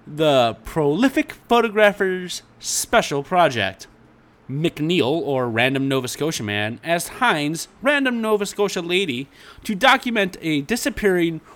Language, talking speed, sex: English, 110 wpm, male